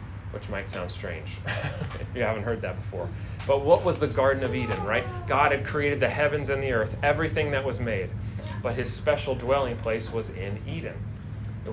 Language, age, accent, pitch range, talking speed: English, 30-49, American, 105-130 Hz, 200 wpm